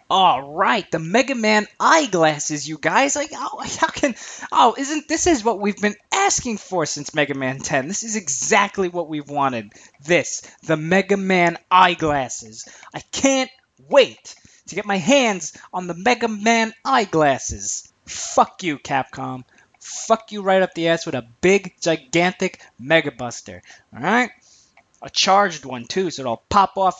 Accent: American